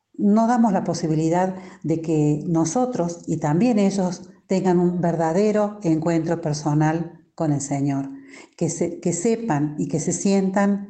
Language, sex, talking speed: English, female, 145 wpm